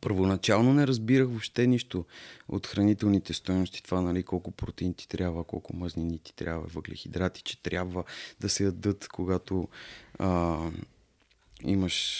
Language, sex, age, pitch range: Bulgarian, male, 20-39, 85-110 Hz